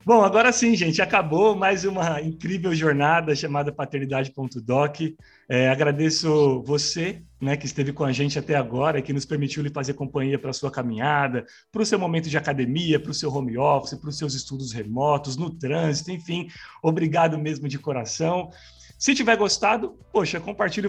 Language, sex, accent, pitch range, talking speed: Portuguese, male, Brazilian, 140-175 Hz, 175 wpm